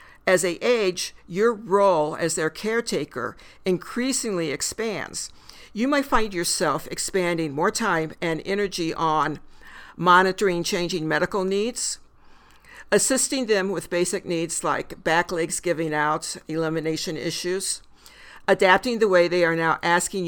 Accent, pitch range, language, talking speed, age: American, 170-210 Hz, English, 125 wpm, 60-79